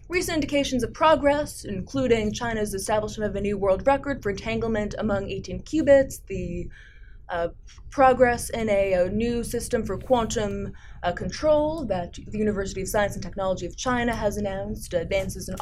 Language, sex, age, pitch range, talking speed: English, female, 20-39, 200-265 Hz, 160 wpm